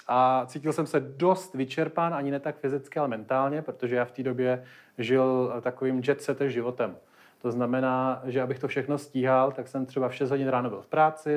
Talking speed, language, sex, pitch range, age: 200 wpm, Czech, male, 130-160 Hz, 30-49